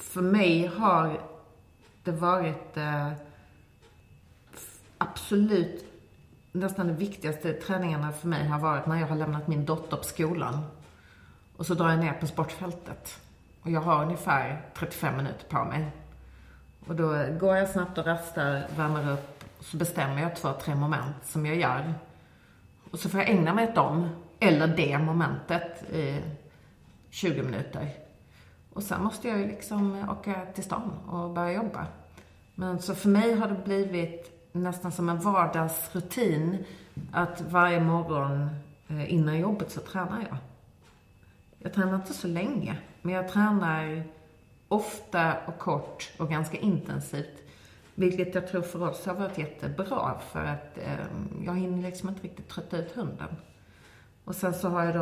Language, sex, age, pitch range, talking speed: Swedish, female, 30-49, 150-180 Hz, 150 wpm